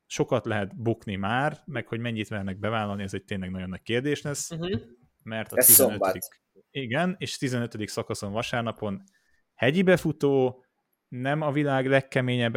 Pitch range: 105-130 Hz